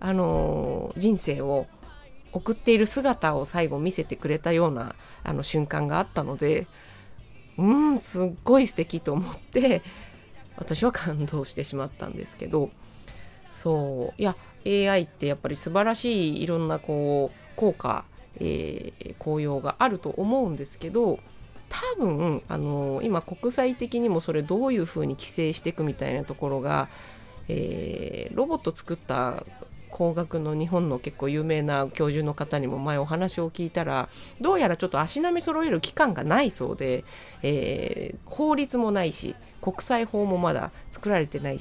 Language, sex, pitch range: Japanese, female, 145-215 Hz